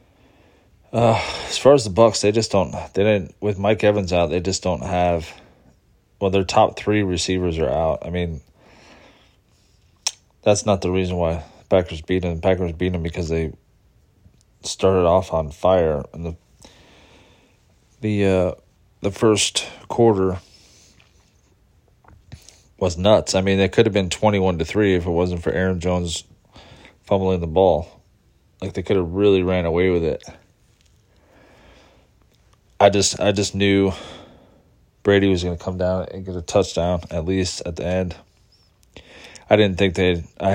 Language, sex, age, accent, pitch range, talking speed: English, male, 20-39, American, 90-100 Hz, 160 wpm